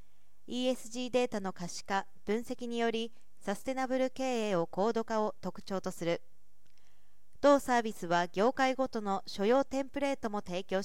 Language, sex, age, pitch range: Japanese, female, 40-59, 195-250 Hz